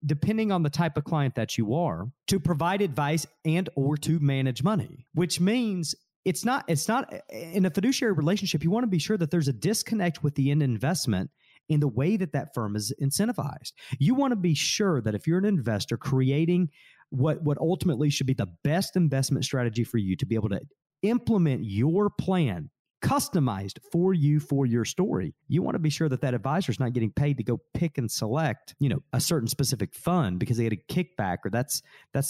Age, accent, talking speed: 40-59, American, 210 wpm